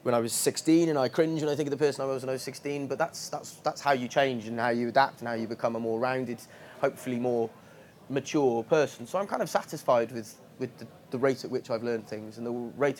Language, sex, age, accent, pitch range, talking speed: English, male, 20-39, British, 125-160 Hz, 275 wpm